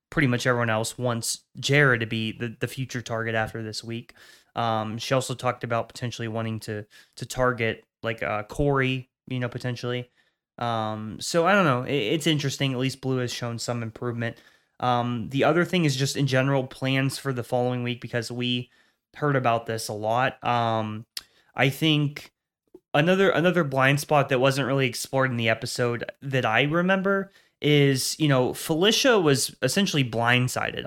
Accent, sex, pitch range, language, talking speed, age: American, male, 115-135 Hz, English, 175 wpm, 20-39